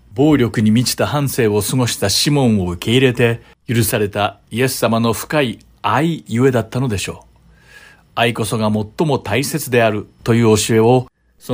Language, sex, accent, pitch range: Japanese, male, native, 100-135 Hz